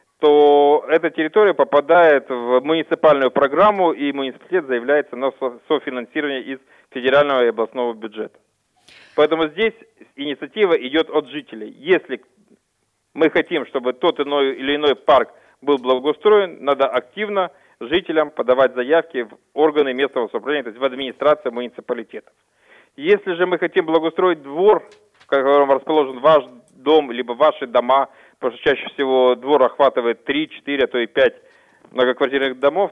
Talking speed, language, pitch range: 135 wpm, Russian, 130-165 Hz